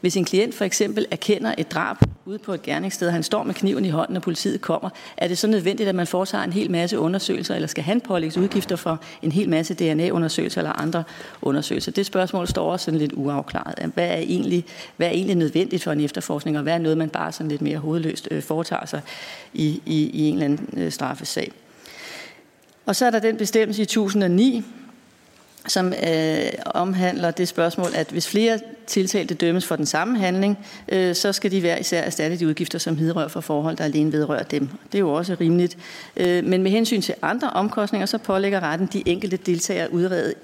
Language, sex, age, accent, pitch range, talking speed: Danish, female, 40-59, native, 160-200 Hz, 210 wpm